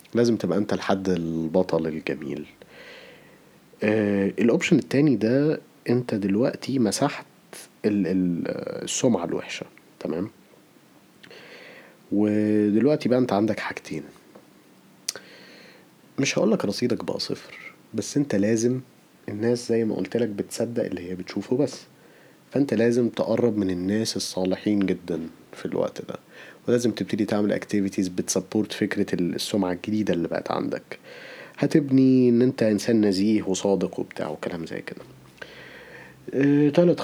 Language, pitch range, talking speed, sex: Arabic, 95-115 Hz, 115 wpm, male